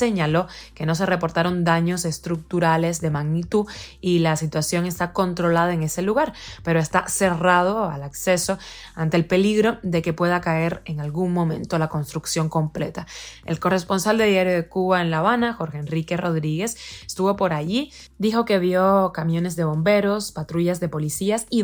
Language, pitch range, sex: Spanish, 165-195 Hz, female